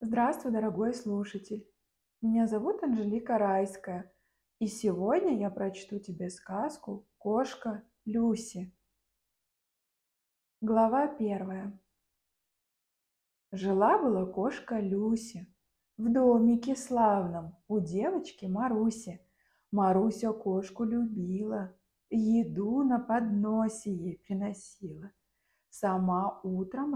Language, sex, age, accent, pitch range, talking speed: Russian, female, 20-39, native, 195-310 Hz, 80 wpm